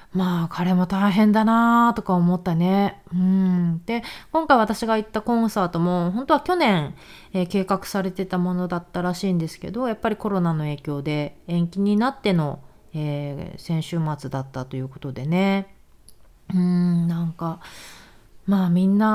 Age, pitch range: 30-49, 170-225 Hz